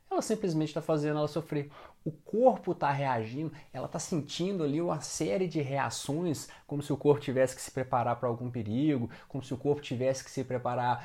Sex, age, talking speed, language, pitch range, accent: male, 20-39, 200 wpm, Portuguese, 130-155 Hz, Brazilian